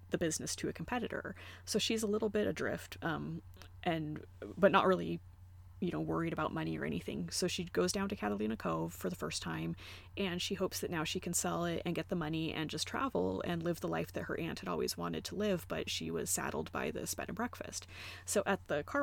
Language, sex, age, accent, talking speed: English, female, 20-39, American, 235 wpm